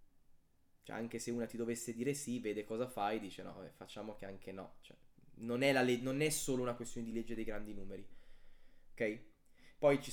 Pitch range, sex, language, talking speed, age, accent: 115-135 Hz, male, Italian, 205 wpm, 20-39, native